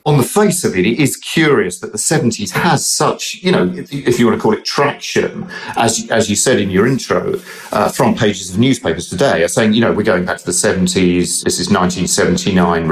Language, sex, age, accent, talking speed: English, male, 40-59, British, 230 wpm